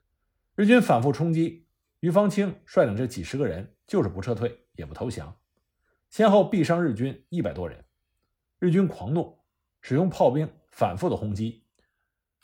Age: 50-69